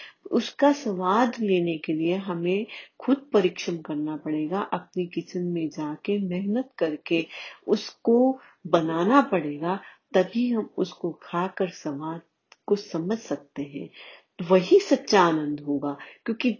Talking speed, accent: 120 wpm, native